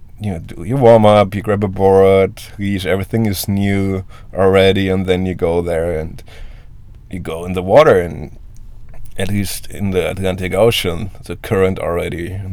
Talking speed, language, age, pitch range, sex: 170 wpm, English, 20-39, 90-110 Hz, male